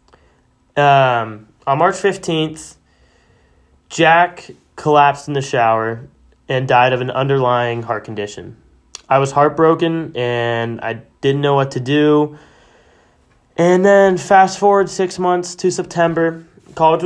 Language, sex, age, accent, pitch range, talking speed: English, male, 20-39, American, 125-150 Hz, 125 wpm